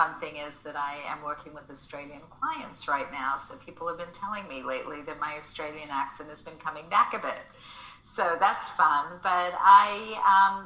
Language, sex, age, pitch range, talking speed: English, female, 50-69, 150-180 Hz, 195 wpm